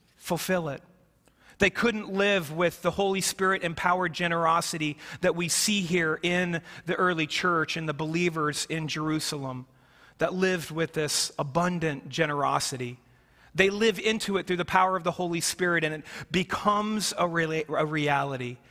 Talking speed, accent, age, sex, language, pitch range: 150 wpm, American, 40-59, male, English, 140-170 Hz